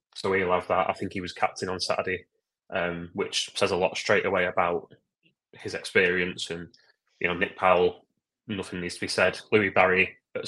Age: 20-39